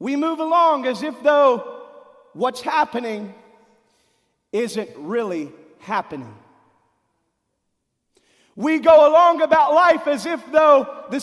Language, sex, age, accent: English, male, 40-59, American